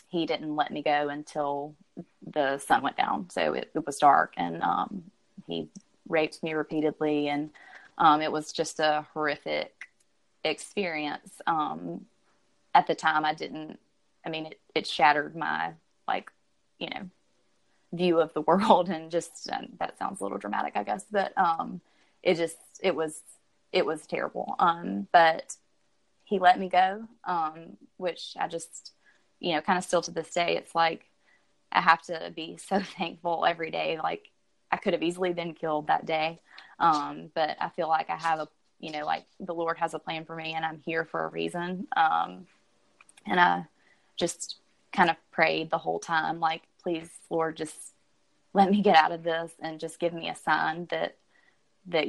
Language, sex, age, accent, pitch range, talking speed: English, female, 20-39, American, 150-170 Hz, 180 wpm